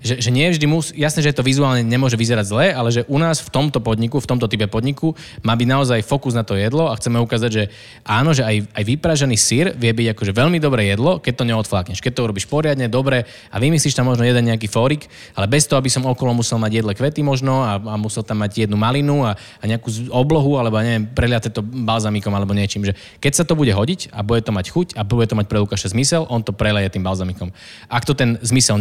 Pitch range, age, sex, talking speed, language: 110-135 Hz, 20-39, male, 245 wpm, Slovak